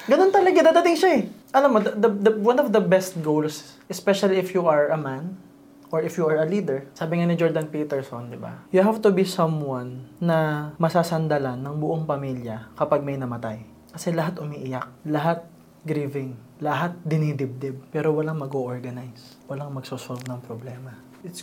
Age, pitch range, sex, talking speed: 20-39, 130-175 Hz, male, 175 wpm